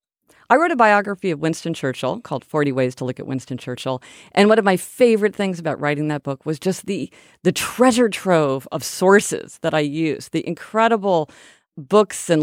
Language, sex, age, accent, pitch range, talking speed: English, female, 40-59, American, 150-210 Hz, 195 wpm